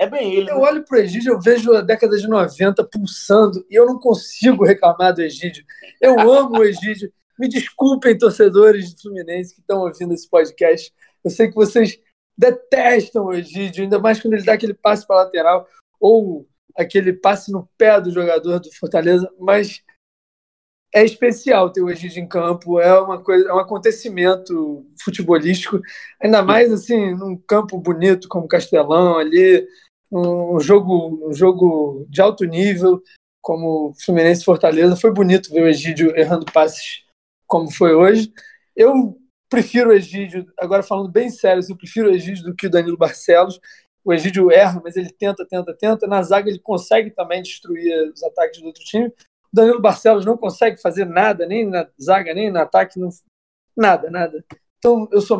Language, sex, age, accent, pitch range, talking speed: Portuguese, male, 20-39, Brazilian, 175-225 Hz, 175 wpm